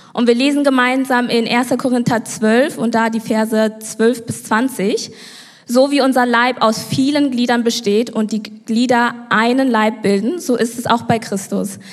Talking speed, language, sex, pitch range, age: 175 wpm, German, female, 215-250 Hz, 20-39